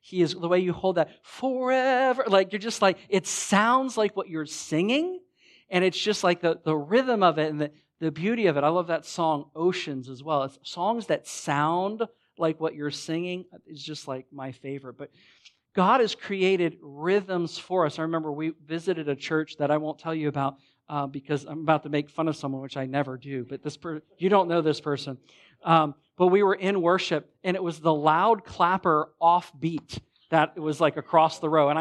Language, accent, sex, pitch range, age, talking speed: English, American, male, 150-190 Hz, 40-59, 215 wpm